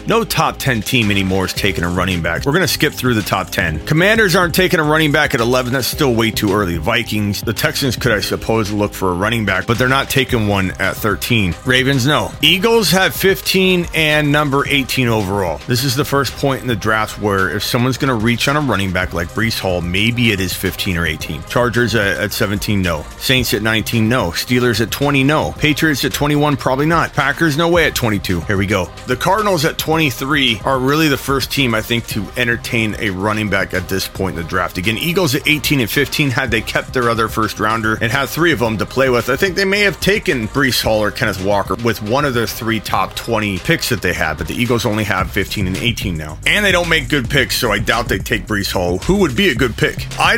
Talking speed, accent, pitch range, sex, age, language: 245 wpm, American, 105-145 Hz, male, 30-49, English